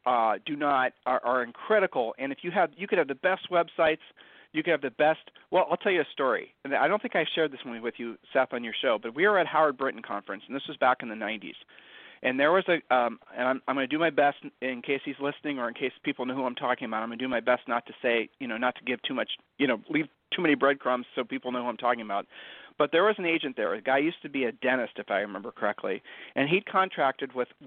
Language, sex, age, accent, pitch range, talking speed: English, male, 40-59, American, 125-160 Hz, 290 wpm